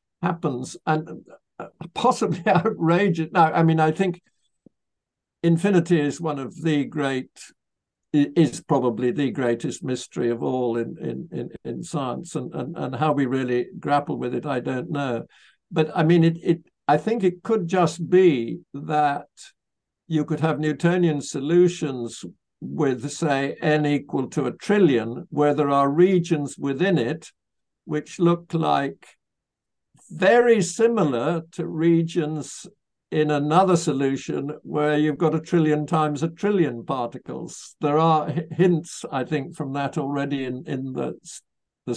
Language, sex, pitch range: English, male, 140-170 Hz